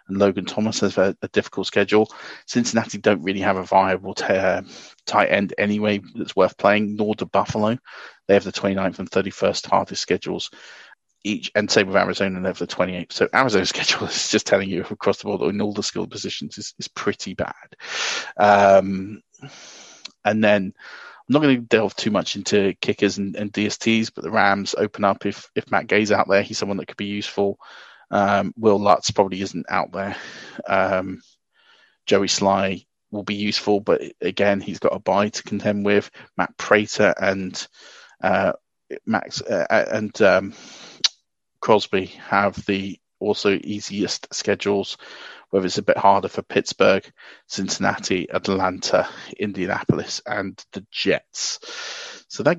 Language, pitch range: English, 95-105 Hz